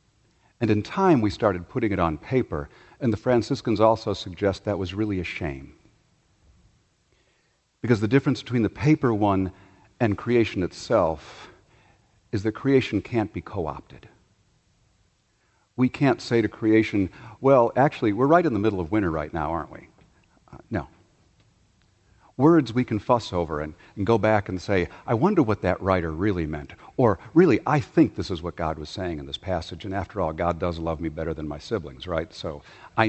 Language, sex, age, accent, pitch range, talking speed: English, male, 50-69, American, 90-115 Hz, 180 wpm